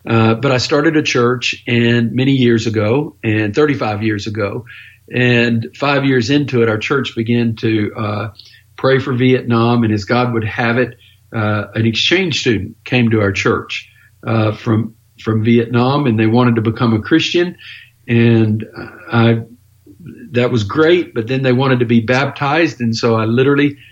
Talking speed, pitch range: 170 wpm, 115-130 Hz